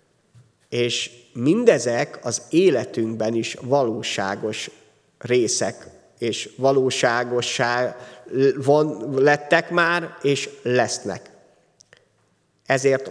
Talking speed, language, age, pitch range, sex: 65 wpm, Hungarian, 30-49, 125-165 Hz, male